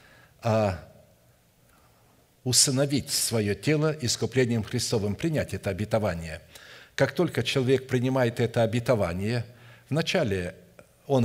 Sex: male